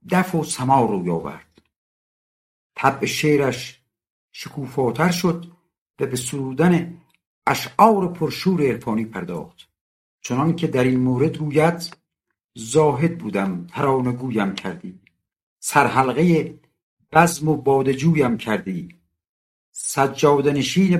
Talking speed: 90 wpm